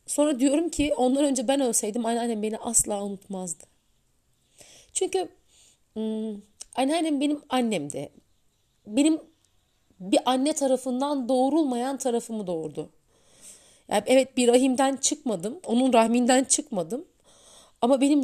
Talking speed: 105 wpm